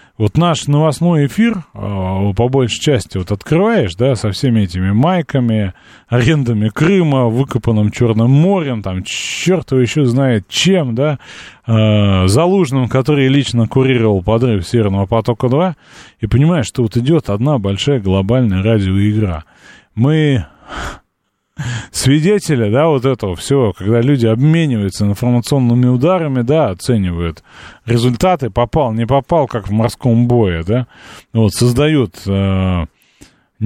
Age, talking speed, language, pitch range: 20-39, 120 wpm, Russian, 105-145 Hz